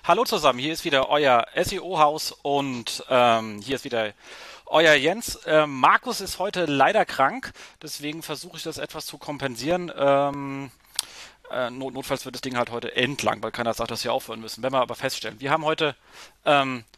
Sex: male